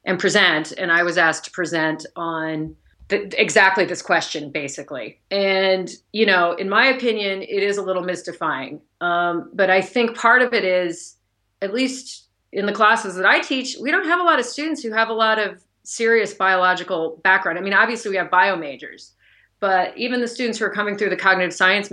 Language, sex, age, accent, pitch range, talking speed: English, female, 30-49, American, 165-205 Hz, 200 wpm